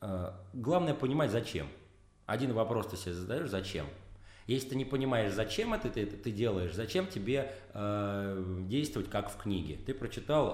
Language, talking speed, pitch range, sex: Russian, 155 wpm, 95-135 Hz, male